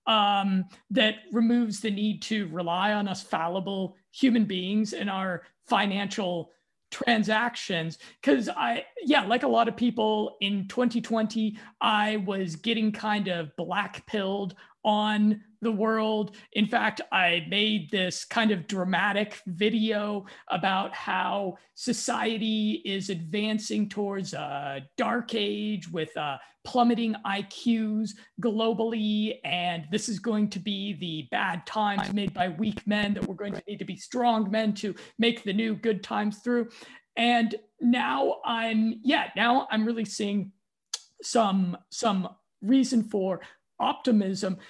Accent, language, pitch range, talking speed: American, English, 195-230 Hz, 135 wpm